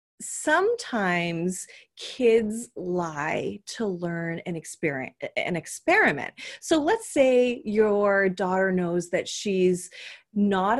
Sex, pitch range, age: female, 185-300 Hz, 30-49